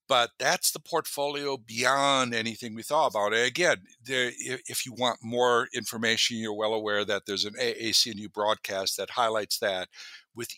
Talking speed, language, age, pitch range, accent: 155 wpm, English, 60-79, 105-130 Hz, American